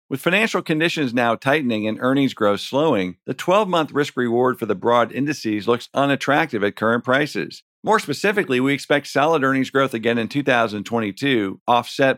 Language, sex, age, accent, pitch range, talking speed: English, male, 50-69, American, 115-155 Hz, 160 wpm